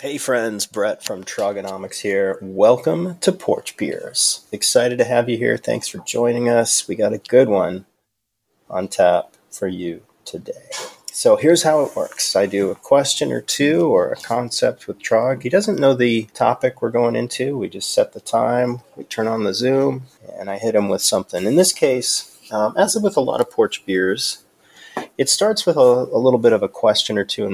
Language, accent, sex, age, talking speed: English, American, male, 30-49, 205 wpm